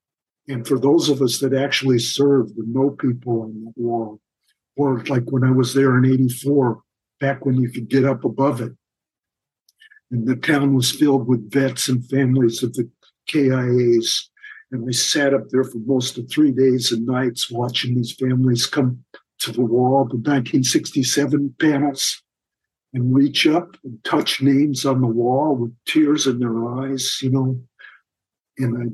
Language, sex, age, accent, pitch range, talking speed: English, male, 60-79, American, 120-140 Hz, 170 wpm